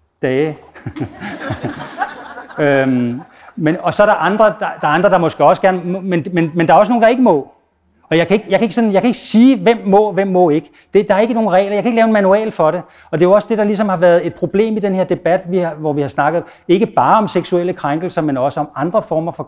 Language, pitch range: Danish, 145-195 Hz